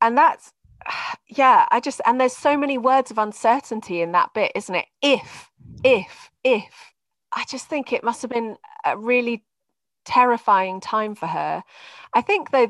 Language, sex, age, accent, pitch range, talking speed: English, female, 30-49, British, 190-280 Hz, 170 wpm